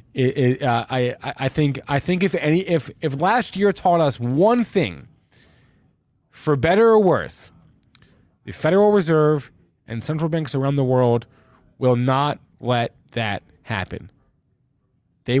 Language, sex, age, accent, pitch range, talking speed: English, male, 20-39, American, 115-155 Hz, 140 wpm